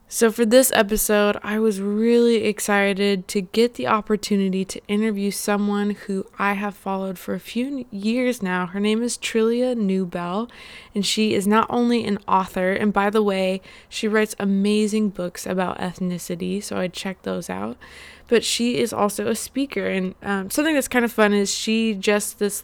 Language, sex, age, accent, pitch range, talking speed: English, female, 20-39, American, 190-220 Hz, 180 wpm